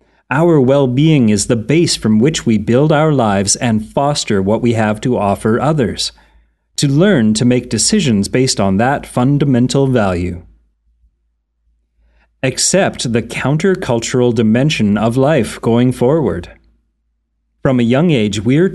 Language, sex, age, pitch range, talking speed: English, male, 30-49, 110-145 Hz, 140 wpm